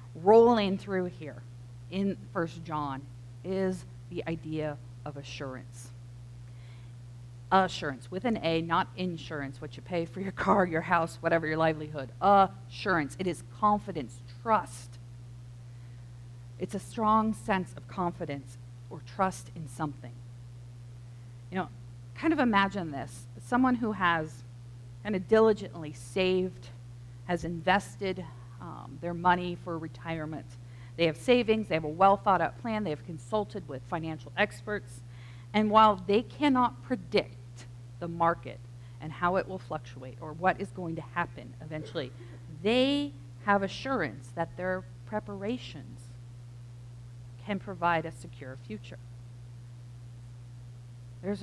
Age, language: 40-59, English